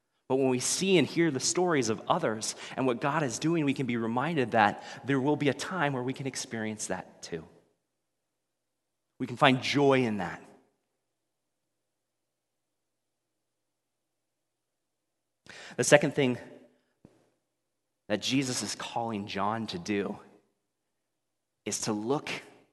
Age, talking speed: 30-49, 130 wpm